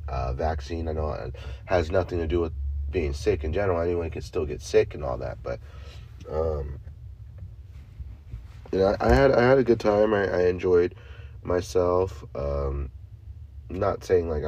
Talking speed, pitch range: 165 wpm, 70-90 Hz